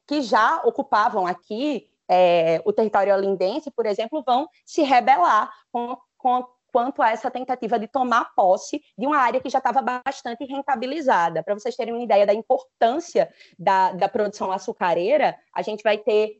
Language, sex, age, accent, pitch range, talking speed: Portuguese, female, 20-39, Brazilian, 200-265 Hz, 155 wpm